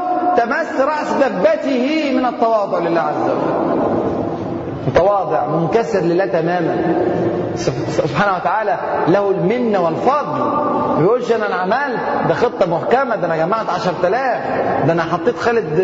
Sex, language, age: male, Arabic, 30-49